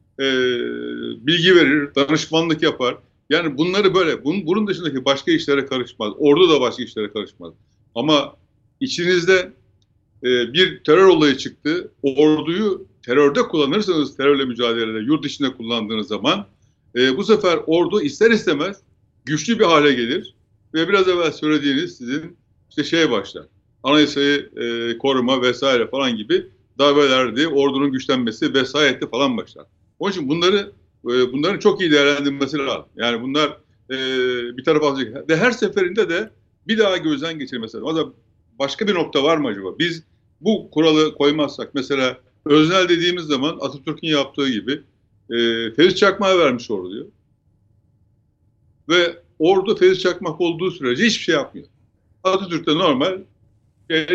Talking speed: 135 wpm